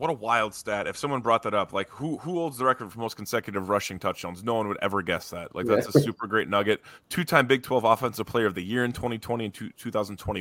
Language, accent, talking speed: English, American, 255 wpm